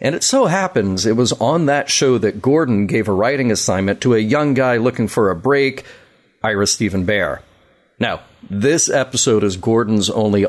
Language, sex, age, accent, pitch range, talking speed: English, male, 40-59, American, 100-125 Hz, 185 wpm